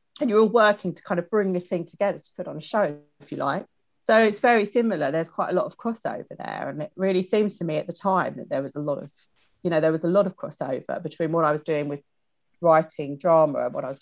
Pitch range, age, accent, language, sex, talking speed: 160-205 Hz, 40-59, British, English, female, 280 wpm